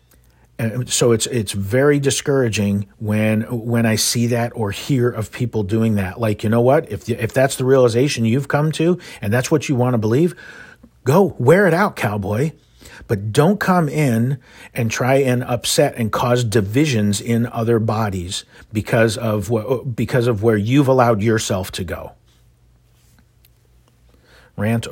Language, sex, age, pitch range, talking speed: English, male, 40-59, 105-135 Hz, 165 wpm